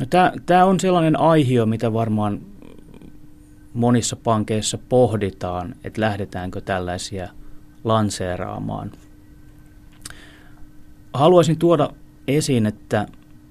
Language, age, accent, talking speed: Finnish, 30-49, native, 80 wpm